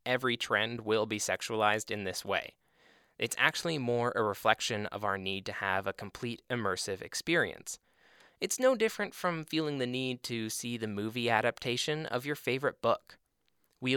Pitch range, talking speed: 110-165 Hz, 170 wpm